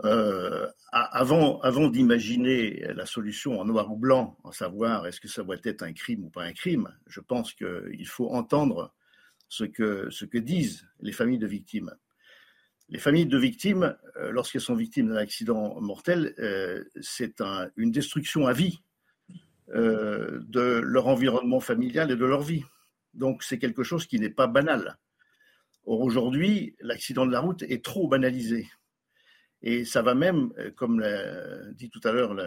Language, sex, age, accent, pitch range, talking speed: French, male, 50-69, French, 125-205 Hz, 165 wpm